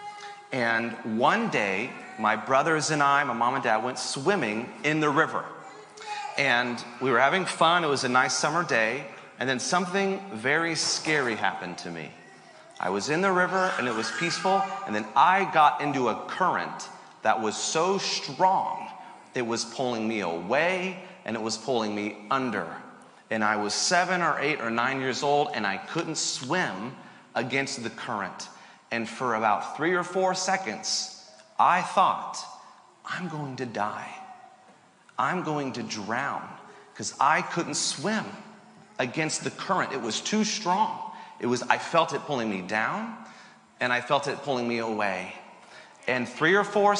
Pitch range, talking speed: 120-185 Hz, 165 wpm